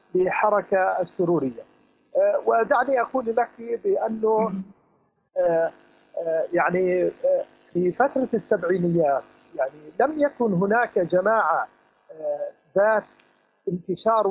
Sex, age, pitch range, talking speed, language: male, 50-69, 195-235 Hz, 90 wpm, Arabic